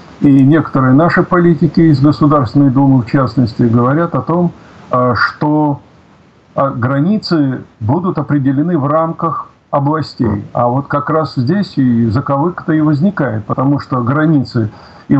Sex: male